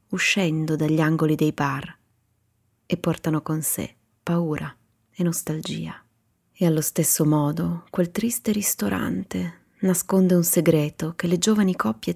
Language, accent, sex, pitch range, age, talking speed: Italian, native, female, 120-170 Hz, 30-49, 130 wpm